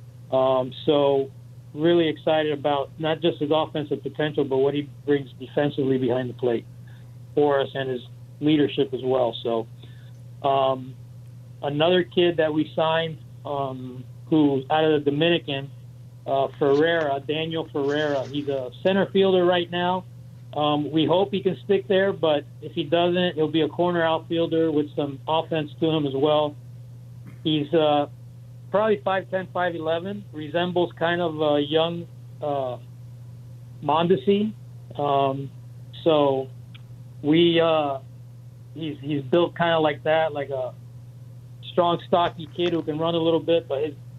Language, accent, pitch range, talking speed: English, American, 125-160 Hz, 145 wpm